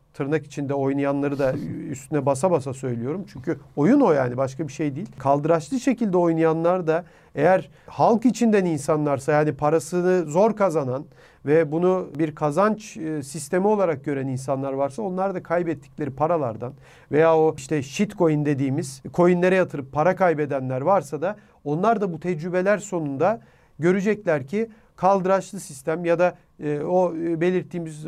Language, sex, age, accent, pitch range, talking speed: Turkish, male, 40-59, native, 150-195 Hz, 140 wpm